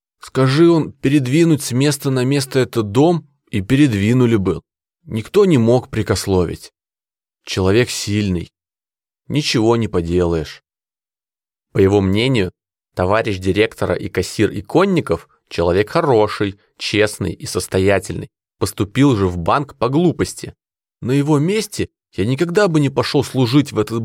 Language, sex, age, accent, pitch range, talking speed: Russian, male, 20-39, native, 95-140 Hz, 125 wpm